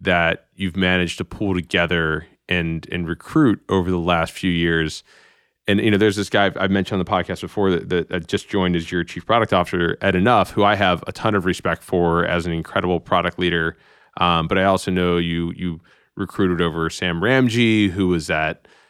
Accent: American